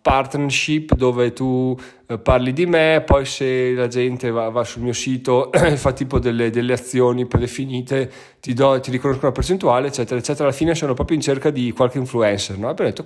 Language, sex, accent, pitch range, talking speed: Italian, male, native, 120-150 Hz, 190 wpm